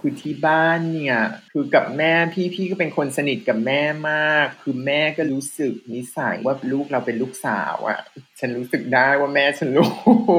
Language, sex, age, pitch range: Thai, male, 20-39, 120-170 Hz